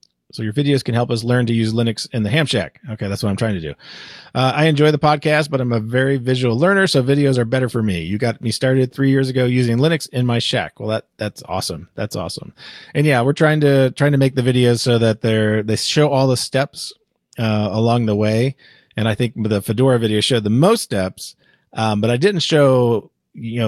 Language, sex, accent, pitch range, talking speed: English, male, American, 100-130 Hz, 240 wpm